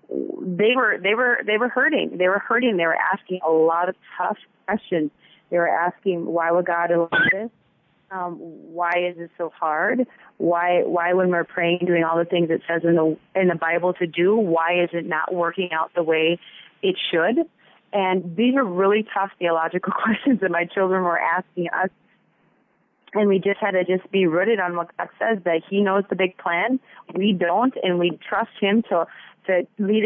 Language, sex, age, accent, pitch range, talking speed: English, female, 30-49, American, 170-200 Hz, 200 wpm